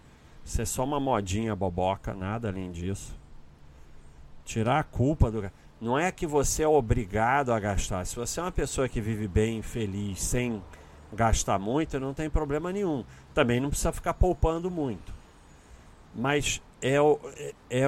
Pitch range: 100-145 Hz